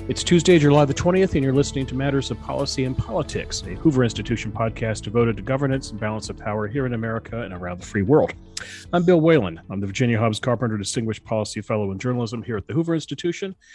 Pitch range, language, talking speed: 100-140 Hz, English, 225 wpm